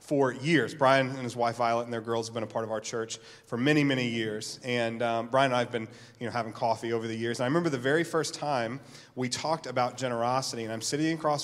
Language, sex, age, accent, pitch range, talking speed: English, male, 30-49, American, 125-160 Hz, 260 wpm